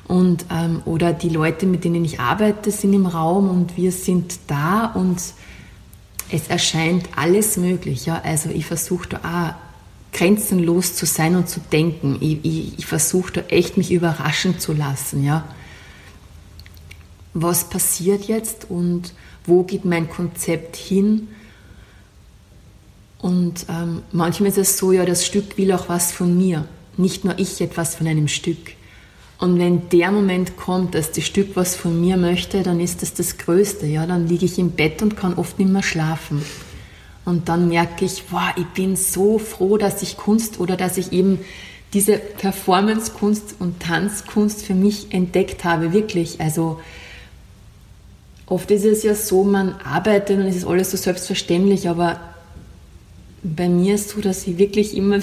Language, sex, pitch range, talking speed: German, female, 160-190 Hz, 165 wpm